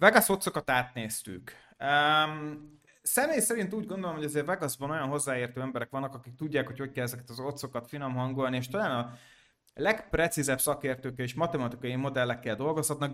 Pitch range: 125-155 Hz